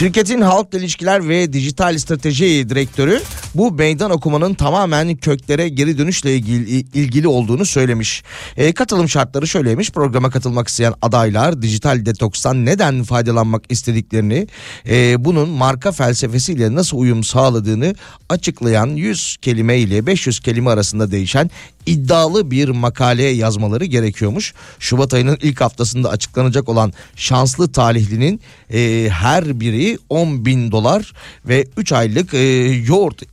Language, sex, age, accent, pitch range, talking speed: Turkish, male, 40-59, native, 115-145 Hz, 125 wpm